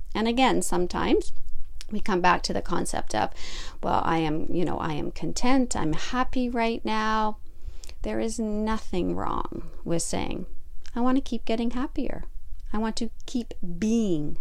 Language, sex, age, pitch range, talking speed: English, female, 40-59, 165-230 Hz, 160 wpm